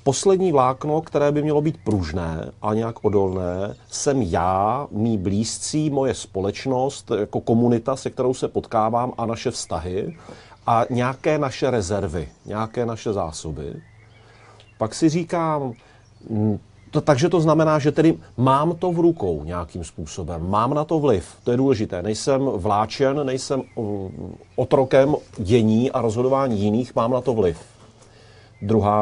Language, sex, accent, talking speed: Czech, male, native, 135 wpm